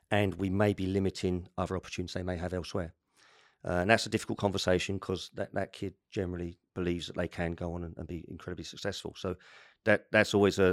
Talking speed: 215 wpm